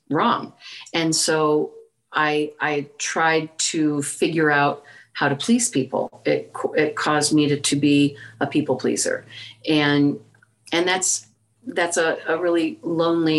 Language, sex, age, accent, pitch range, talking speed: English, female, 40-59, American, 140-155 Hz, 140 wpm